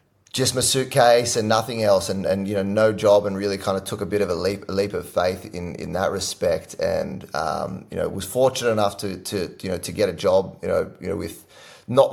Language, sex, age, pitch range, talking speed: English, male, 30-49, 95-110 Hz, 250 wpm